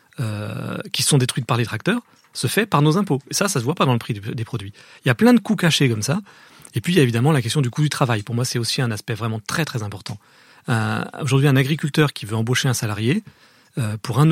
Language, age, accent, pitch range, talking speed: French, 40-59, French, 120-160 Hz, 280 wpm